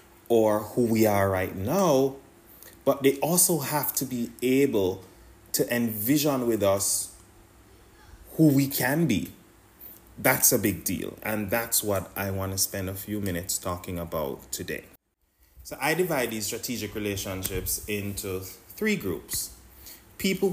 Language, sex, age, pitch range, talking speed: English, male, 30-49, 95-135 Hz, 135 wpm